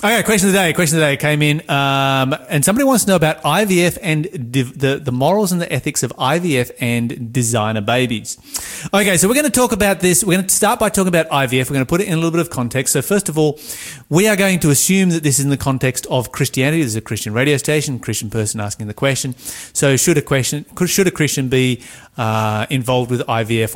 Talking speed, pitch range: 250 wpm, 120-160 Hz